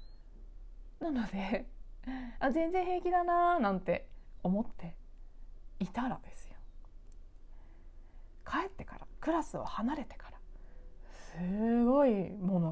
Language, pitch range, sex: Japanese, 180-250 Hz, female